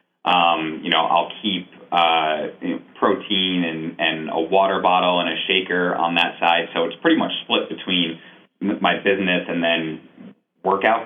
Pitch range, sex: 80-95 Hz, male